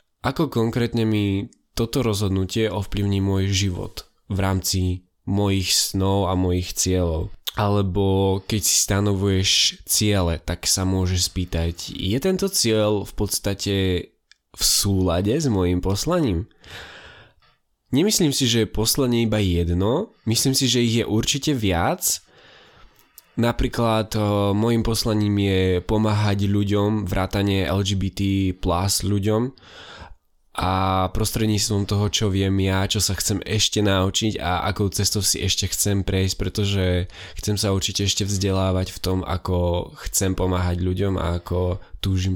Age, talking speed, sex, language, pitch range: 20-39, 125 wpm, male, Slovak, 95-105 Hz